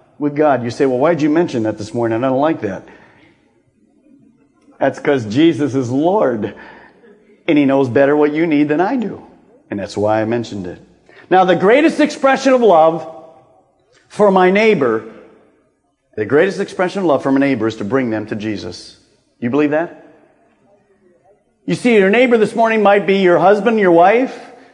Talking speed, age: 180 wpm, 50-69